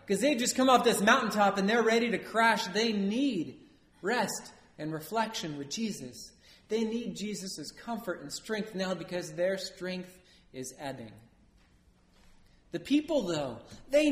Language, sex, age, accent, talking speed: English, male, 40-59, American, 150 wpm